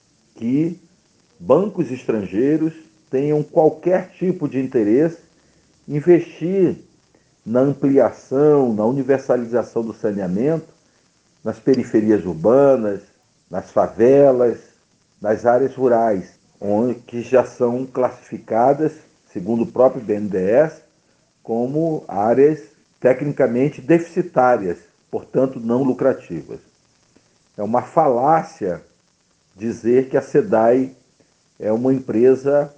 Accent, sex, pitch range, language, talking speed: Brazilian, male, 115-155 Hz, Portuguese, 90 wpm